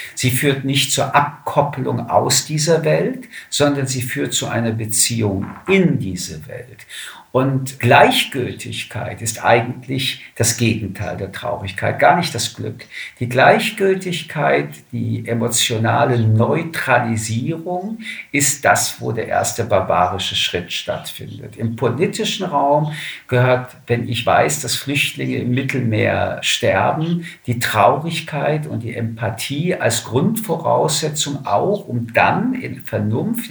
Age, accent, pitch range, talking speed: 50-69, German, 115-155 Hz, 120 wpm